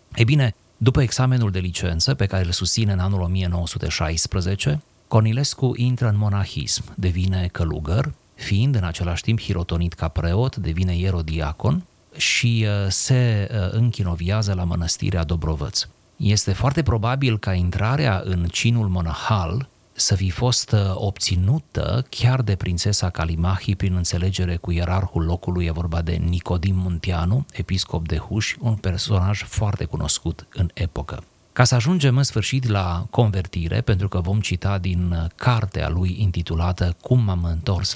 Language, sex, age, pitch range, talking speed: Romanian, male, 40-59, 90-115 Hz, 140 wpm